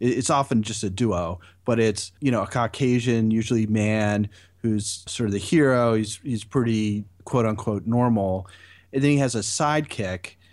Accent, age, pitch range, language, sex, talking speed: American, 30-49, 100-120 Hz, English, male, 170 wpm